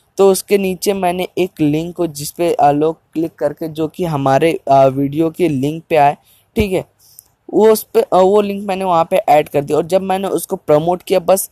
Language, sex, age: Hindi, female, 20-39